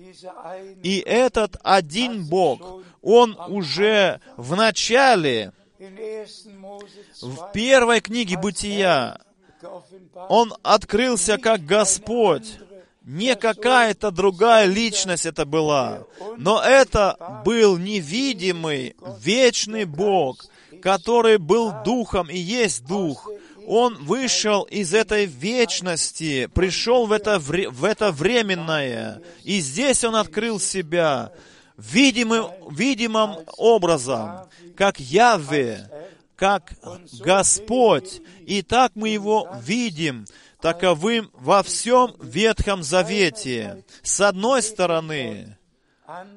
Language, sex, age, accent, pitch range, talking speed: Russian, male, 30-49, native, 175-220 Hz, 90 wpm